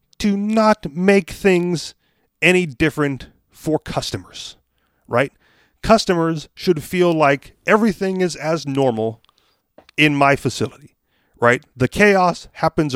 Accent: American